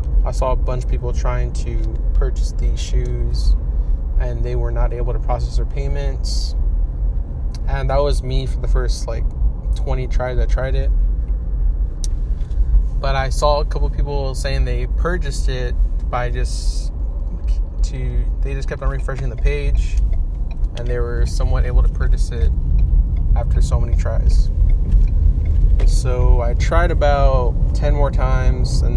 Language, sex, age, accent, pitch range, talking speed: English, male, 20-39, American, 65-75 Hz, 150 wpm